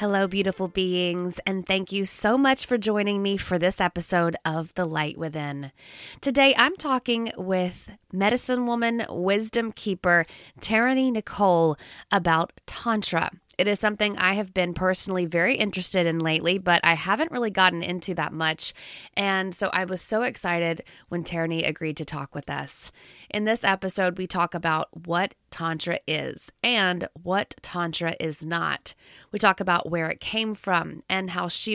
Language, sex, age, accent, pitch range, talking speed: English, female, 20-39, American, 170-205 Hz, 165 wpm